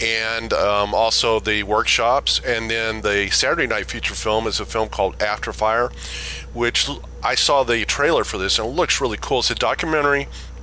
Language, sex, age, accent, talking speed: English, male, 30-49, American, 185 wpm